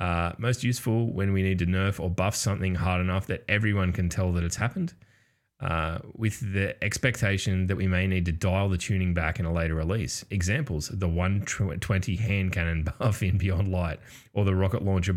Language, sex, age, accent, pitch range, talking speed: English, male, 20-39, Australian, 85-105 Hz, 200 wpm